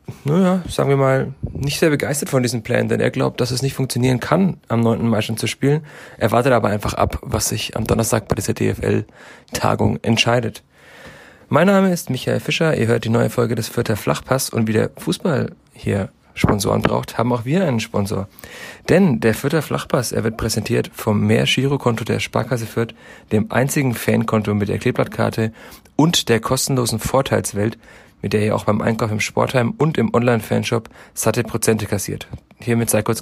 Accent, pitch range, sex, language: German, 105-125 Hz, male, German